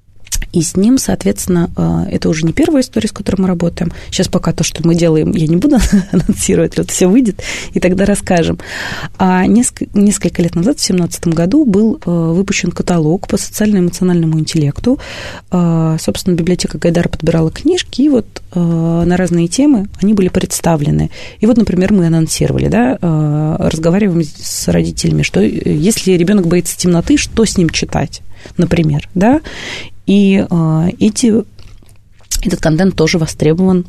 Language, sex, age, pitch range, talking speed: Russian, female, 30-49, 160-205 Hz, 145 wpm